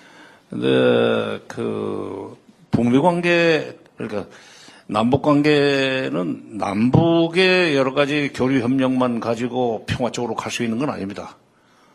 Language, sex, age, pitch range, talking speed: English, male, 60-79, 115-150 Hz, 90 wpm